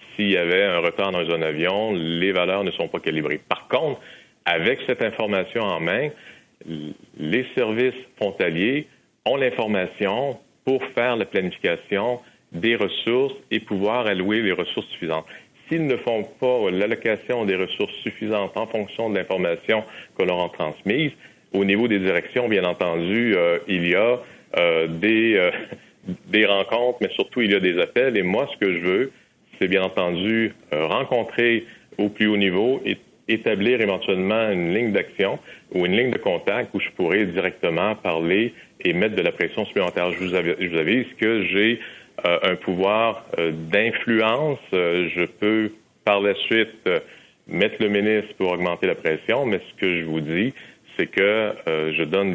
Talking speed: 165 wpm